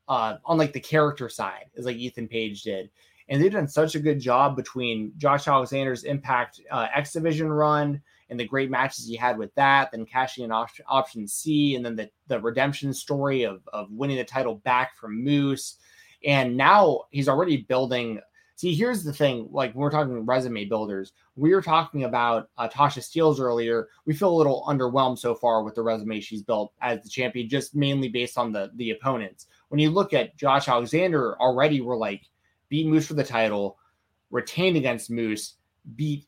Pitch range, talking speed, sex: 115-145 Hz, 195 wpm, male